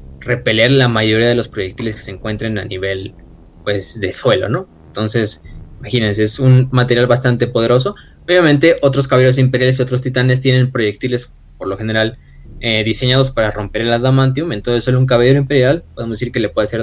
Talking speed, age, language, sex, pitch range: 180 wpm, 20-39, Spanish, male, 110-135 Hz